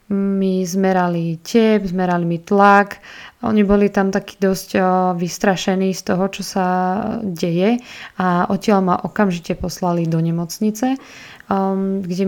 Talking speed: 120 wpm